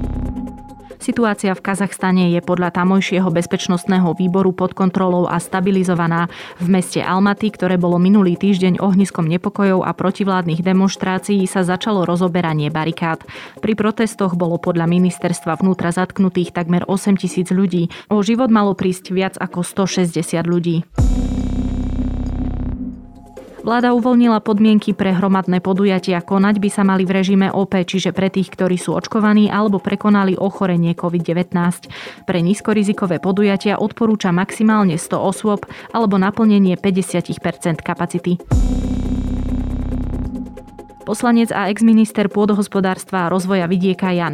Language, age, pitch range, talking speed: Slovak, 20-39, 175-195 Hz, 120 wpm